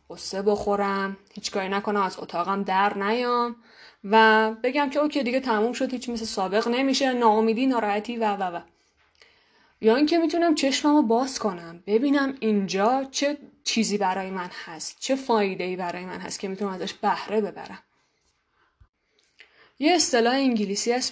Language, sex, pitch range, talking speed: Persian, female, 195-245 Hz, 150 wpm